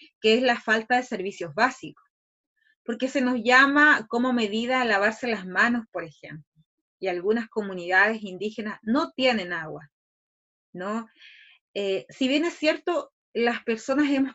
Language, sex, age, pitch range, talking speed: English, female, 30-49, 220-275 Hz, 145 wpm